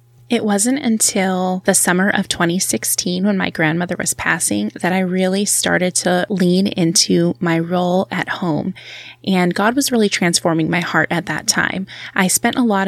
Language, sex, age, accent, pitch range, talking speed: English, female, 20-39, American, 170-195 Hz, 170 wpm